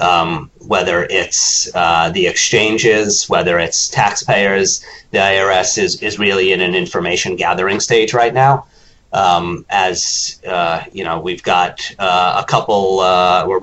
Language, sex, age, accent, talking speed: English, male, 30-49, American, 145 wpm